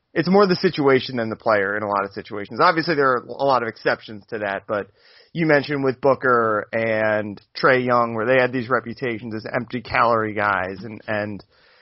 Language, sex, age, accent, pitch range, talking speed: English, male, 30-49, American, 120-145 Hz, 205 wpm